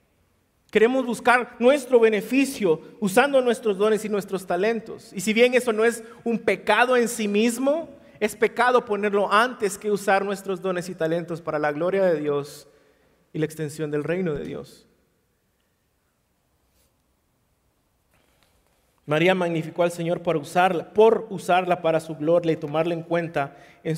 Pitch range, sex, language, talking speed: 175-225 Hz, male, Spanish, 145 wpm